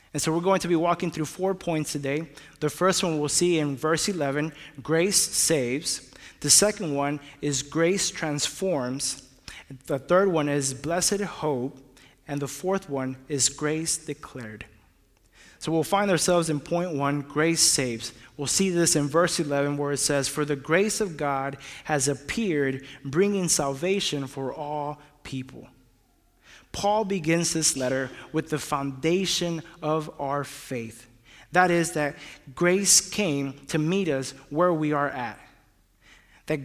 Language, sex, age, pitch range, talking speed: English, male, 20-39, 135-175 Hz, 150 wpm